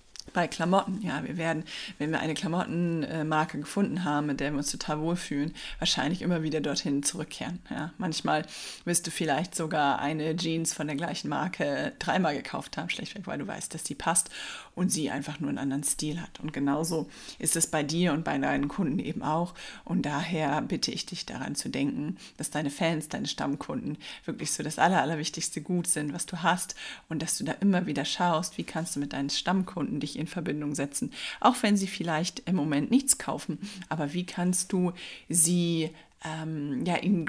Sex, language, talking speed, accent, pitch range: female, German, 195 wpm, German, 155-190 Hz